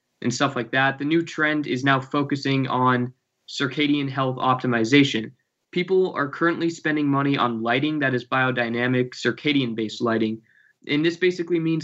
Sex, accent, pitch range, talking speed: male, American, 125-150 Hz, 150 wpm